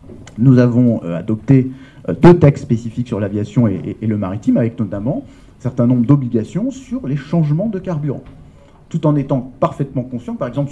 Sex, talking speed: male, 160 wpm